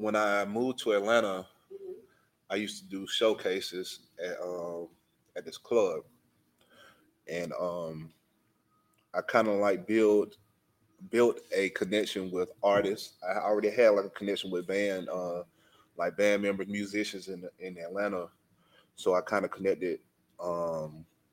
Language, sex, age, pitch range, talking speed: English, male, 30-49, 90-110 Hz, 140 wpm